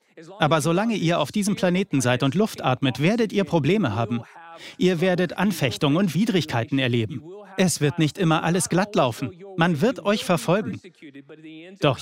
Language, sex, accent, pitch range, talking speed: German, male, German, 145-195 Hz, 160 wpm